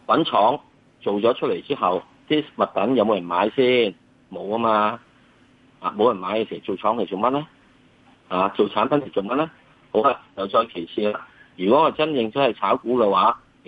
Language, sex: Chinese, male